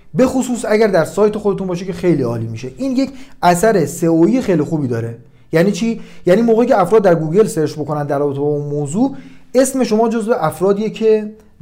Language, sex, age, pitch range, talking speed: Persian, male, 40-59, 150-220 Hz, 185 wpm